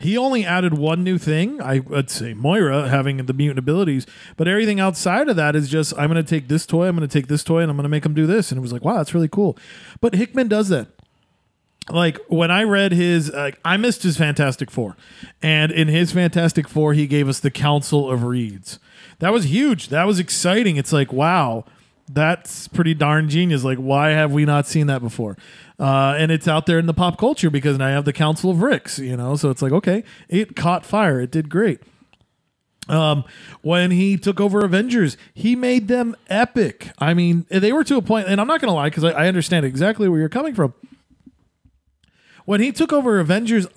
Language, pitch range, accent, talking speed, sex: English, 145-195 Hz, American, 215 wpm, male